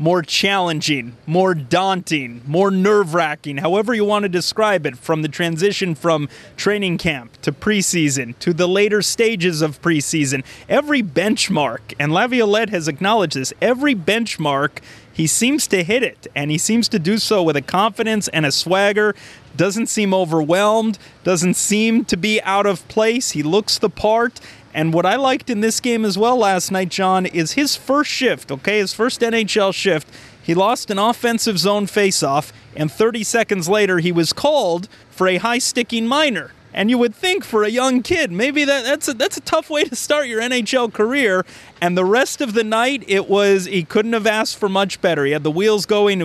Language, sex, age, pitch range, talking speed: English, male, 30-49, 165-225 Hz, 190 wpm